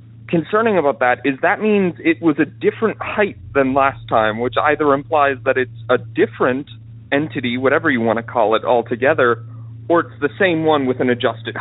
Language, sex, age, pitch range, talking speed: English, male, 30-49, 115-160 Hz, 190 wpm